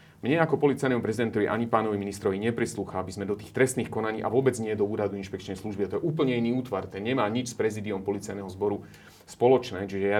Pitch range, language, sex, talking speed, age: 105-140 Hz, Slovak, male, 210 wpm, 30-49